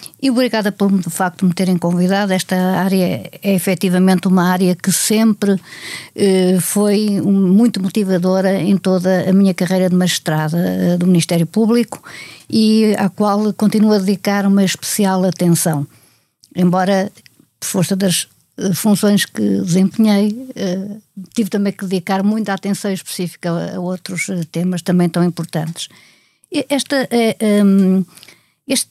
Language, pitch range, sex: Portuguese, 180-210 Hz, female